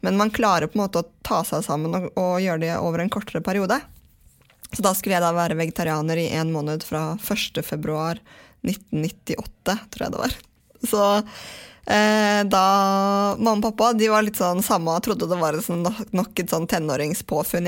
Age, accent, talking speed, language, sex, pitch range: 20-39, Swedish, 175 wpm, English, female, 165-205 Hz